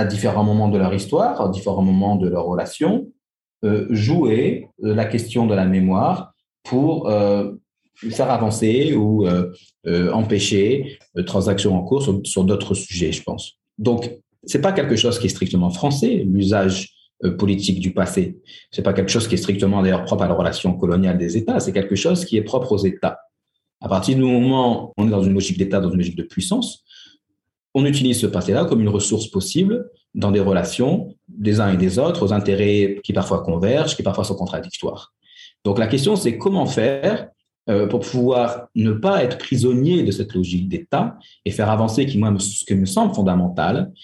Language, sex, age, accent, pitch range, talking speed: English, male, 40-59, French, 95-115 Hz, 190 wpm